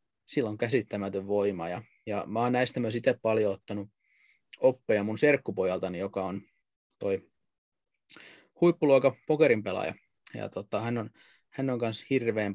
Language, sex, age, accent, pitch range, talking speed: Finnish, male, 30-49, native, 105-125 Hz, 135 wpm